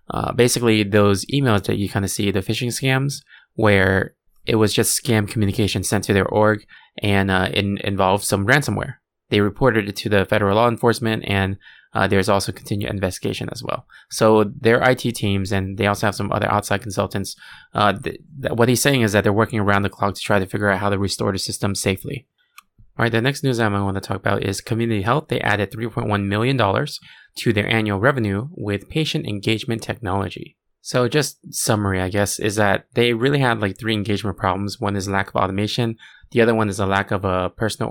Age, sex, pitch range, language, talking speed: 20-39, male, 100-115 Hz, English, 210 wpm